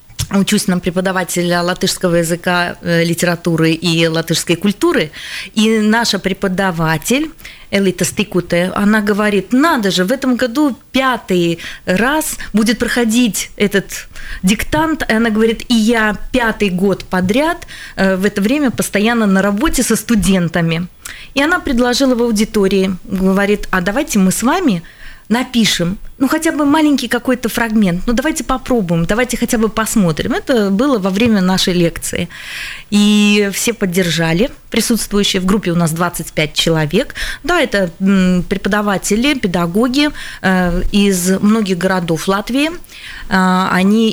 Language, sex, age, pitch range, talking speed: Russian, female, 20-39, 180-235 Hz, 125 wpm